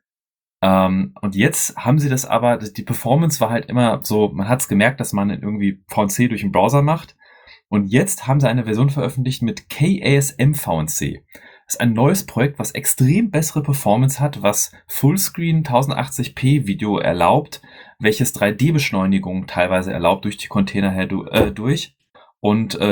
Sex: male